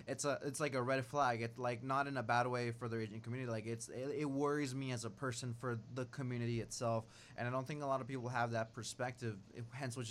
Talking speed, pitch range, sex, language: 260 wpm, 110-130 Hz, male, English